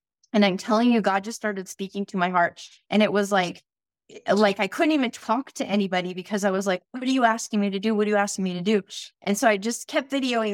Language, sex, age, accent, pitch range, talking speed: English, female, 20-39, American, 190-225 Hz, 260 wpm